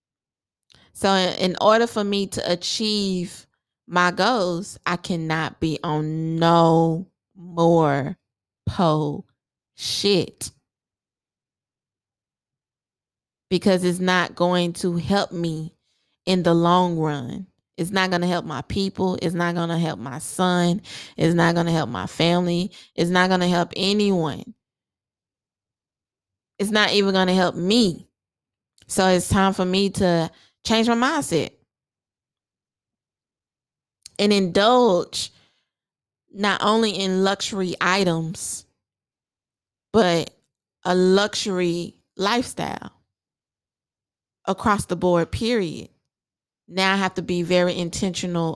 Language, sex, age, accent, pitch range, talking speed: English, female, 20-39, American, 160-195 Hz, 115 wpm